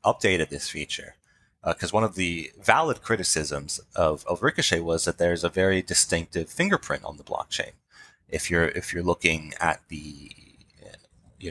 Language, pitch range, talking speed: English, 80-95 Hz, 160 wpm